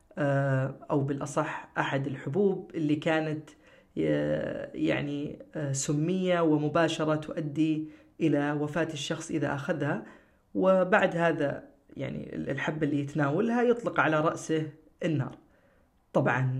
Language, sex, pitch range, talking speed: Arabic, female, 145-170 Hz, 95 wpm